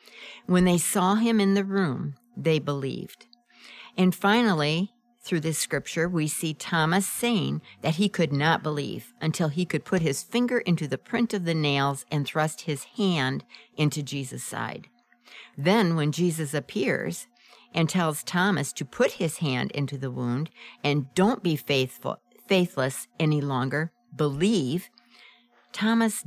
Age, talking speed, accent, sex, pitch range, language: 60-79, 150 wpm, American, female, 150-210 Hz, English